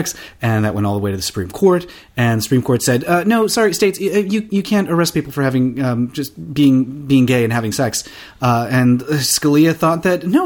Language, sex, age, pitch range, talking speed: English, male, 30-49, 115-180 Hz, 230 wpm